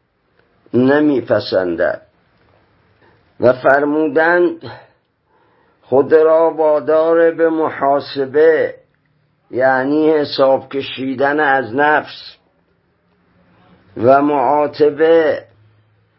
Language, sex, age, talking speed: Persian, male, 50-69, 55 wpm